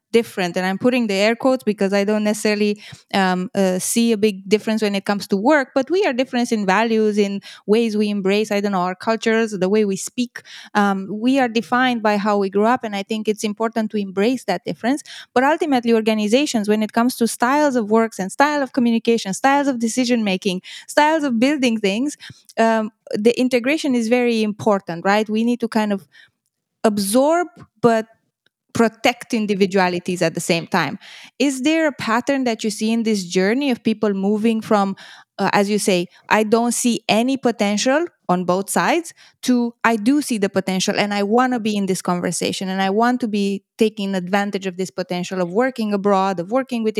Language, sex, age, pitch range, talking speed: English, female, 20-39, 195-240 Hz, 200 wpm